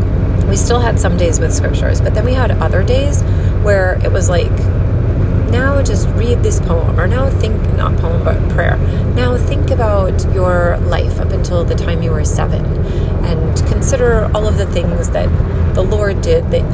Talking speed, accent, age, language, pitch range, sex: 185 wpm, American, 30-49, English, 85-95 Hz, female